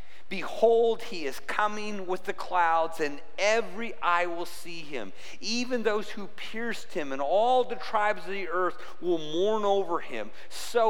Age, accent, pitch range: 40-59, American, 165-220 Hz